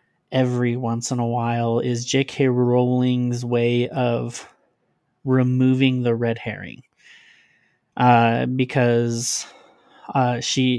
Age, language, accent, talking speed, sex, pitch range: 30-49, English, American, 100 wpm, male, 120-135 Hz